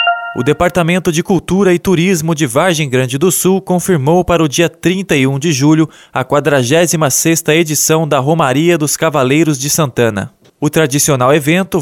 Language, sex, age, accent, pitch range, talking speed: Portuguese, male, 20-39, Brazilian, 150-175 Hz, 150 wpm